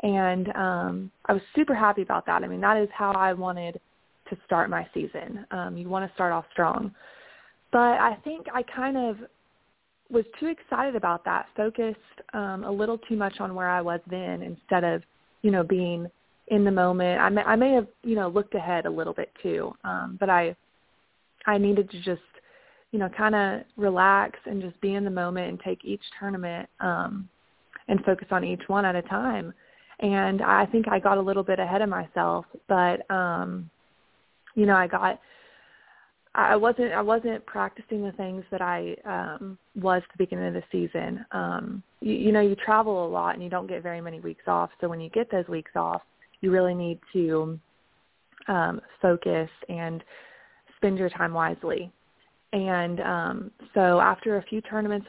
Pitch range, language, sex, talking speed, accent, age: 175-210 Hz, English, female, 190 wpm, American, 20-39